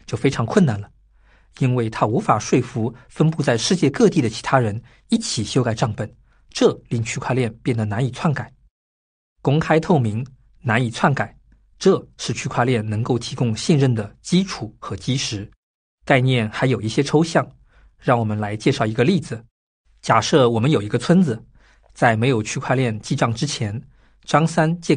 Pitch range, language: 115-150 Hz, Chinese